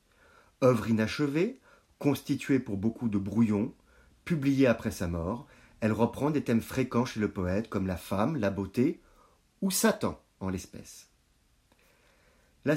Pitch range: 100-160 Hz